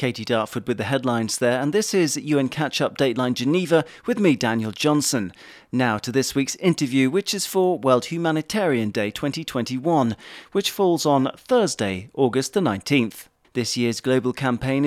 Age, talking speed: 40-59, 160 wpm